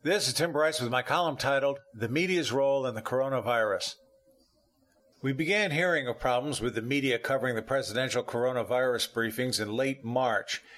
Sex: male